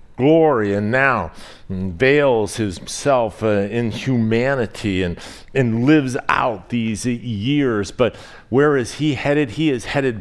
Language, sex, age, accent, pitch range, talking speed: English, male, 50-69, American, 110-130 Hz, 130 wpm